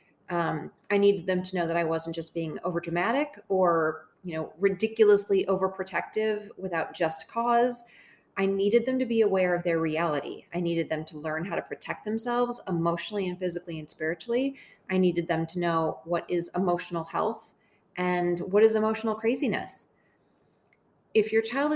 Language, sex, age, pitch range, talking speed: English, female, 30-49, 175-220 Hz, 165 wpm